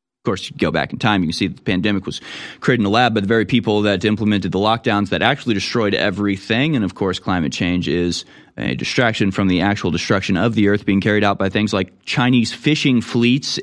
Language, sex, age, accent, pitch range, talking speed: English, male, 30-49, American, 105-140 Hz, 235 wpm